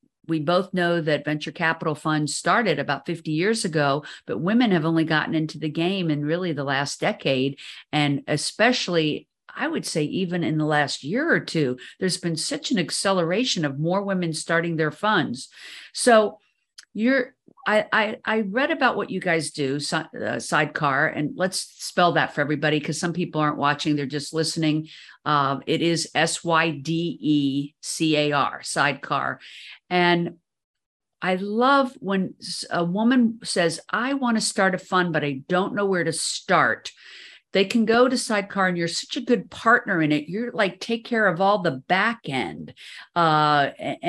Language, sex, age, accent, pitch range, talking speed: English, female, 50-69, American, 150-195 Hz, 170 wpm